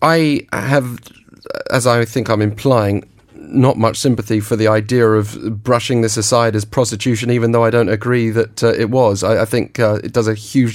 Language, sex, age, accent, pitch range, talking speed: English, male, 30-49, British, 105-120 Hz, 200 wpm